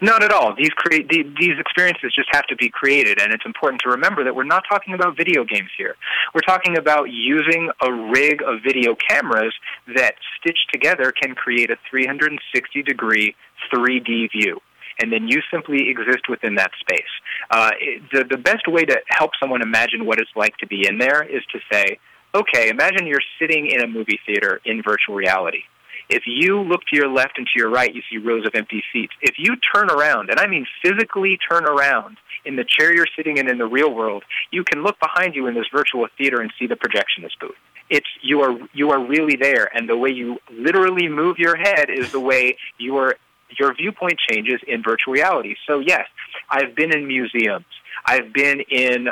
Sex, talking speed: male, 205 wpm